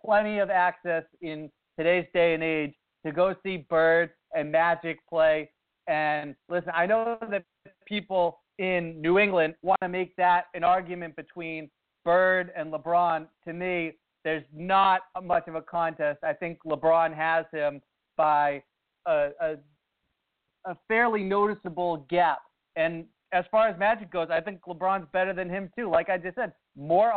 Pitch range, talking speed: 160-190 Hz, 160 wpm